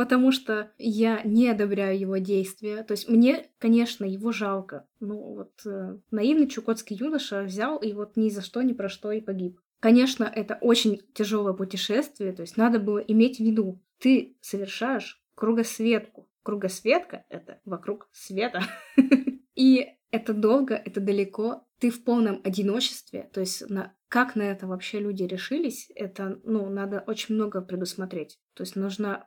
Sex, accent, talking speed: female, native, 155 wpm